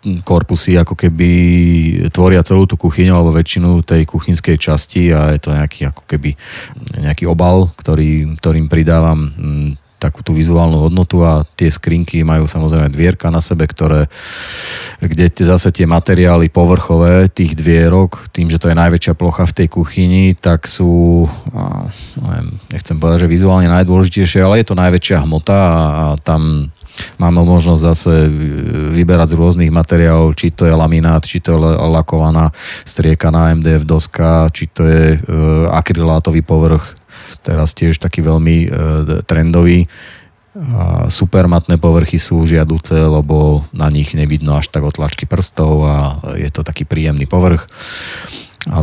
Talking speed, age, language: 145 wpm, 30-49, Slovak